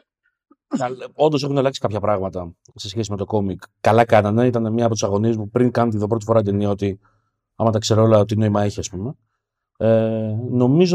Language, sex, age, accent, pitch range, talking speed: Greek, male, 30-49, native, 100-125 Hz, 210 wpm